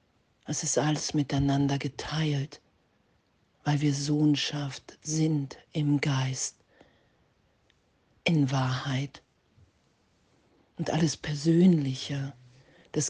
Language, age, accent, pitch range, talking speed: German, 50-69, German, 135-155 Hz, 80 wpm